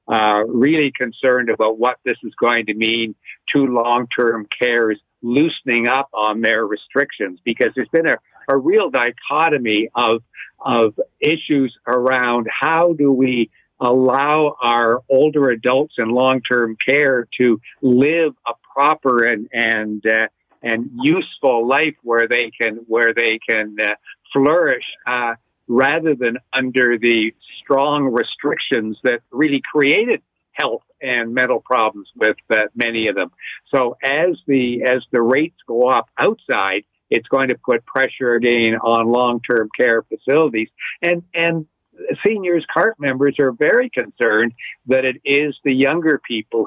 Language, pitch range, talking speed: English, 115-140 Hz, 145 wpm